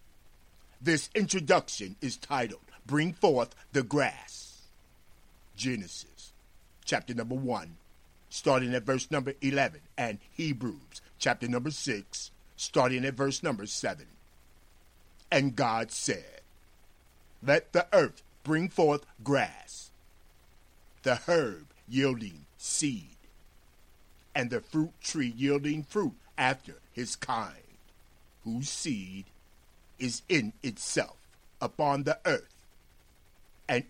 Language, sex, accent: English, male, American